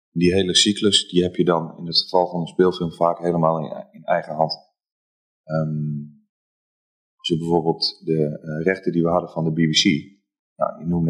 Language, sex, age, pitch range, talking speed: Dutch, male, 30-49, 80-95 Hz, 185 wpm